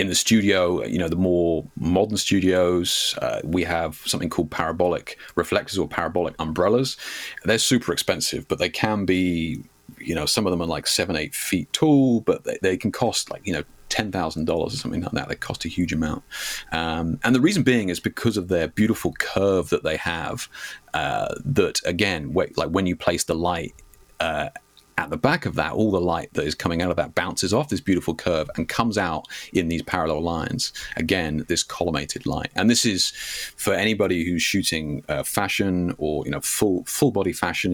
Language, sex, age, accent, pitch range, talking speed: English, male, 40-59, British, 80-100 Hz, 195 wpm